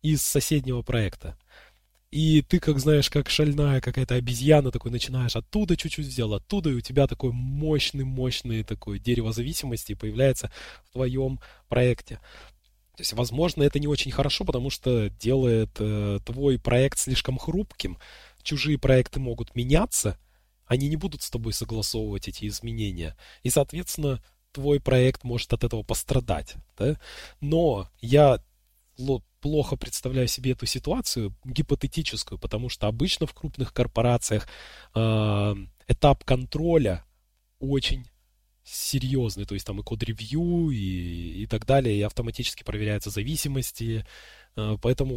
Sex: male